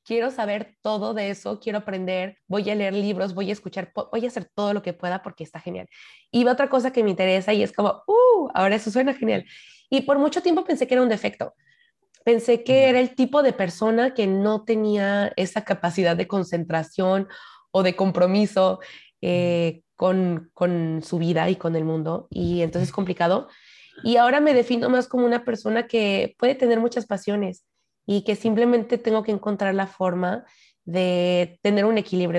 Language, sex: Spanish, female